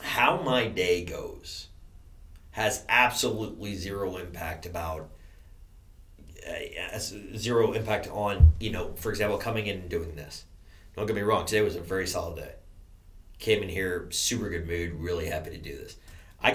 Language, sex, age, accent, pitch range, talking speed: English, male, 30-49, American, 85-105 Hz, 160 wpm